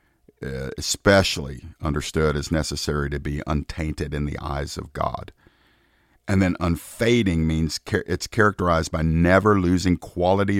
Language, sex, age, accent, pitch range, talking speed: English, male, 50-69, American, 75-95 Hz, 130 wpm